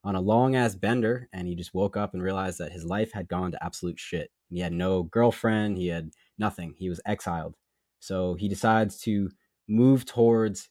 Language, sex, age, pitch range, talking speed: English, male, 20-39, 90-110 Hz, 195 wpm